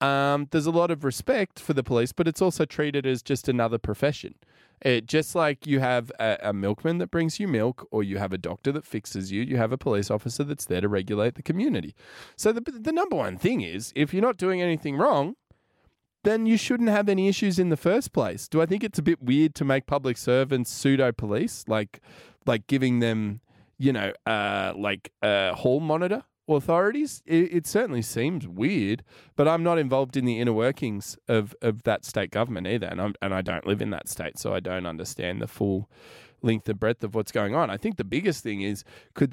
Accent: Australian